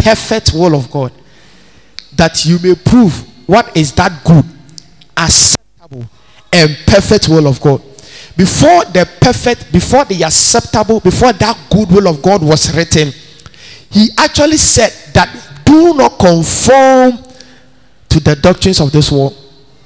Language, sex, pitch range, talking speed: English, male, 140-190 Hz, 135 wpm